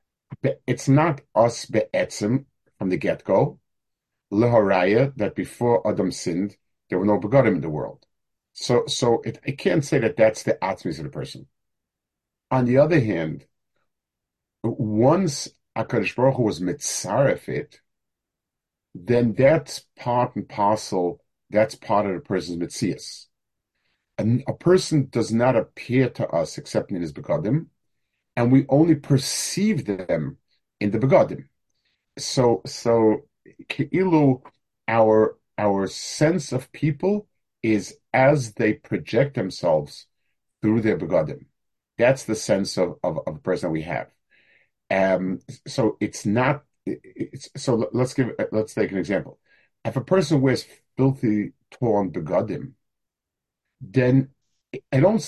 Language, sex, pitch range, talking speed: English, male, 110-140 Hz, 125 wpm